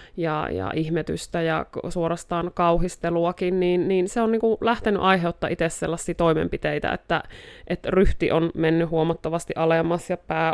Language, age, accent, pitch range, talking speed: Finnish, 30-49, native, 165-180 Hz, 150 wpm